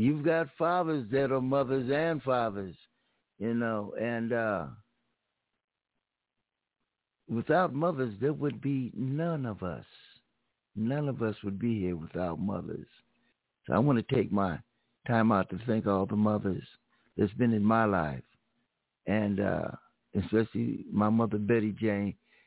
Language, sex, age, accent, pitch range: Japanese, male, 60-79, American, 105-135 Hz